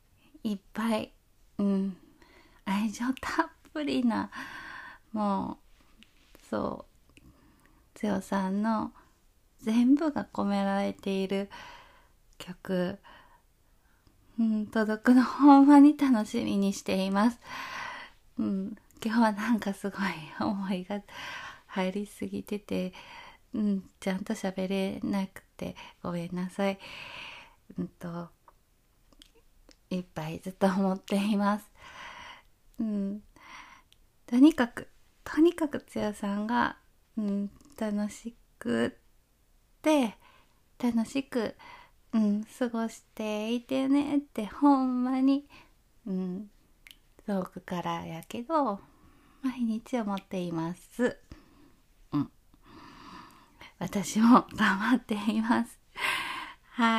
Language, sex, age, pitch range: Japanese, female, 20-39, 195-280 Hz